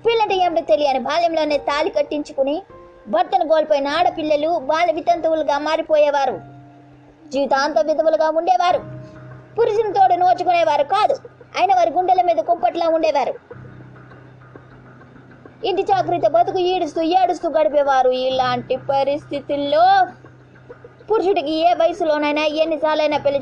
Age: 20-39